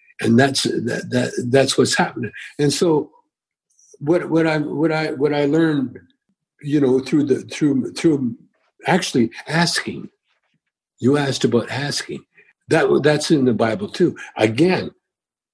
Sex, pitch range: male, 140-190 Hz